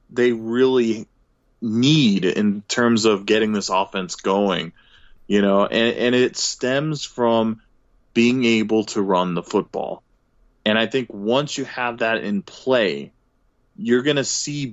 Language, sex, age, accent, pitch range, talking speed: English, male, 20-39, American, 105-125 Hz, 145 wpm